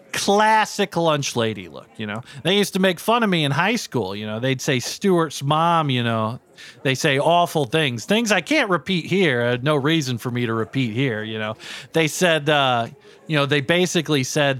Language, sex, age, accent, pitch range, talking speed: English, male, 40-59, American, 135-220 Hz, 210 wpm